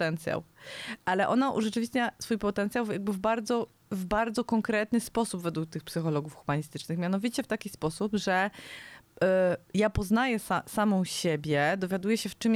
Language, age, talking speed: Polish, 20-39, 155 wpm